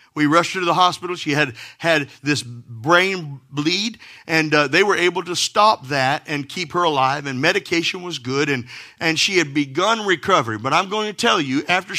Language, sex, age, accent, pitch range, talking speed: English, male, 40-59, American, 150-195 Hz, 205 wpm